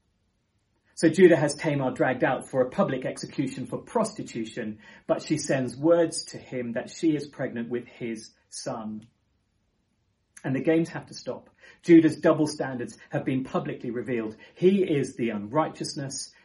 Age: 40-59